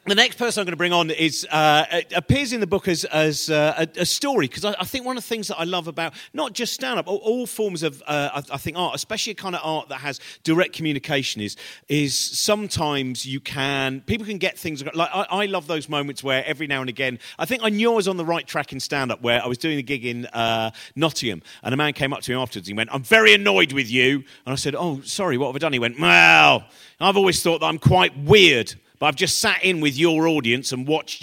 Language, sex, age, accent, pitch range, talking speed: English, male, 40-59, British, 130-190 Hz, 265 wpm